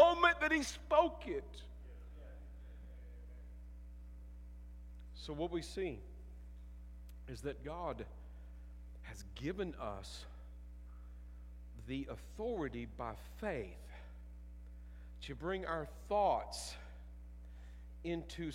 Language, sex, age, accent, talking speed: English, male, 50-69, American, 80 wpm